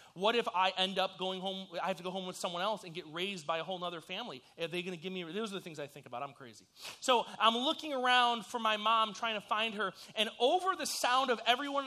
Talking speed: 280 wpm